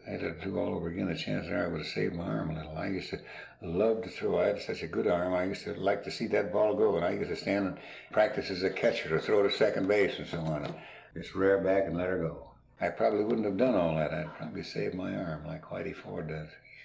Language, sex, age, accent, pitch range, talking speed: English, male, 60-79, American, 85-115 Hz, 290 wpm